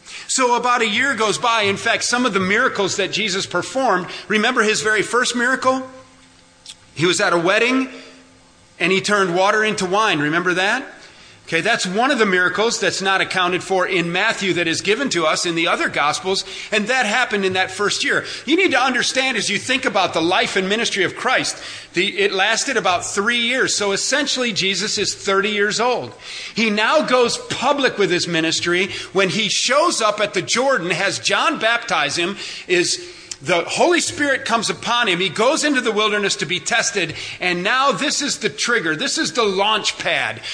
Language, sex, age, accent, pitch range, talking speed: English, male, 40-59, American, 185-240 Hz, 195 wpm